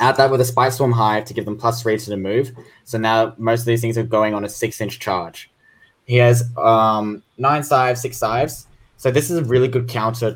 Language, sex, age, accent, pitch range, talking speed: English, male, 10-29, Australian, 105-120 Hz, 245 wpm